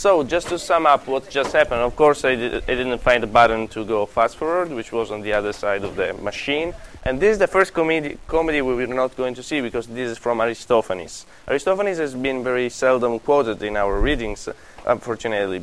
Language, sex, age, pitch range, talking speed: English, male, 20-39, 115-145 Hz, 225 wpm